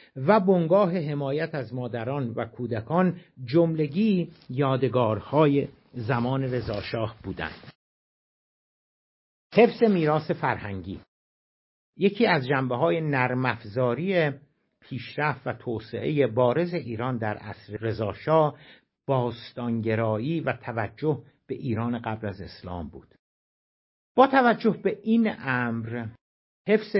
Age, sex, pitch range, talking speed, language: 60-79, male, 115-160 Hz, 100 wpm, Persian